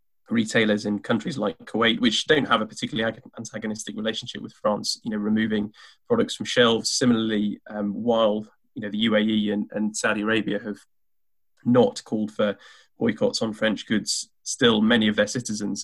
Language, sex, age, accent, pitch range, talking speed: English, male, 20-39, British, 105-125 Hz, 165 wpm